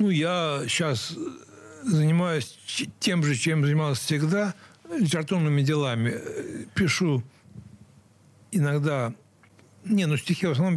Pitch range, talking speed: 130-170 Hz, 100 wpm